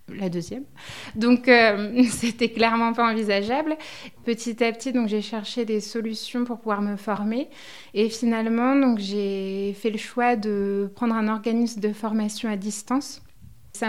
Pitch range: 205-235 Hz